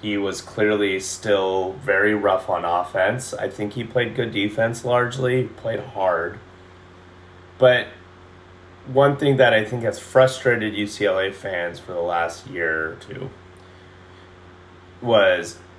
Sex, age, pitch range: male, 30-49, 90-115 Hz